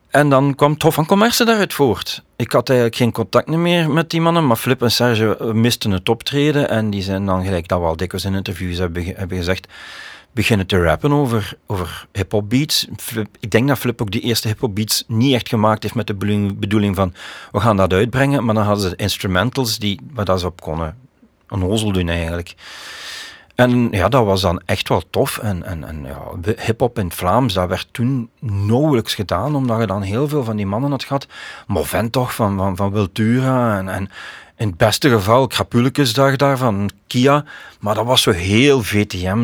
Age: 40-59